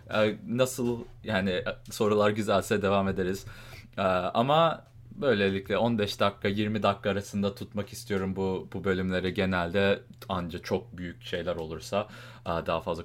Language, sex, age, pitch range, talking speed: English, male, 30-49, 95-115 Hz, 120 wpm